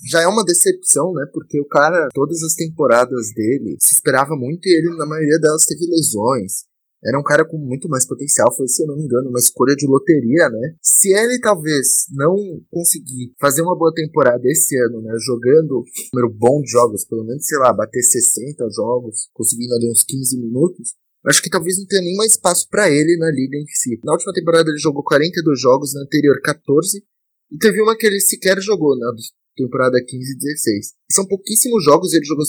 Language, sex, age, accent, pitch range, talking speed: Portuguese, male, 20-39, Brazilian, 125-170 Hz, 205 wpm